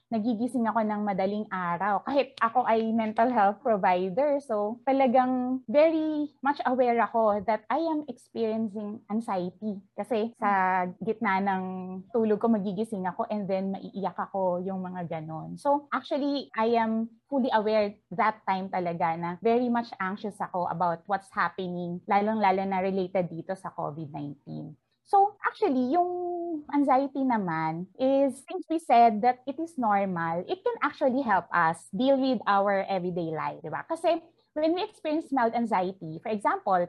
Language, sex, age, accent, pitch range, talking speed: English, female, 20-39, Filipino, 195-265 Hz, 150 wpm